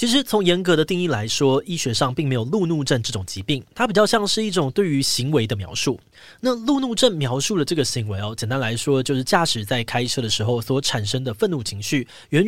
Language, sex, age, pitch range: Chinese, male, 20-39, 115-165 Hz